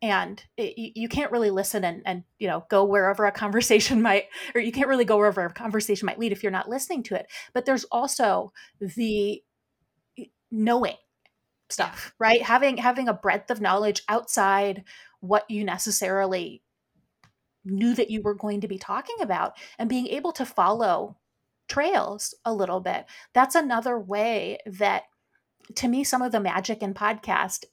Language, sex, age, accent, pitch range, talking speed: English, female, 30-49, American, 200-240 Hz, 170 wpm